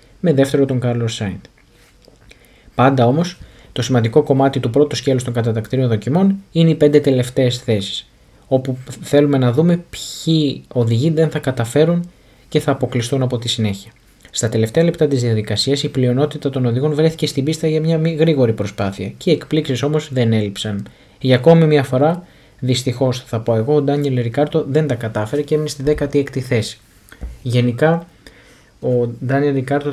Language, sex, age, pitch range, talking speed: Greek, male, 20-39, 115-145 Hz, 160 wpm